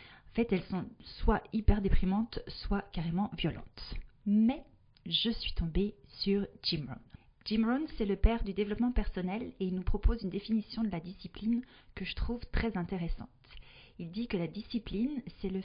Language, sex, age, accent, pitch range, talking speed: French, female, 40-59, French, 175-220 Hz, 175 wpm